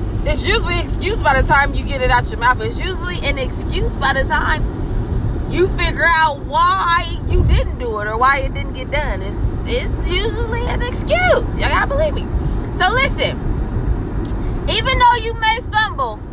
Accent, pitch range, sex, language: American, 315-385 Hz, female, English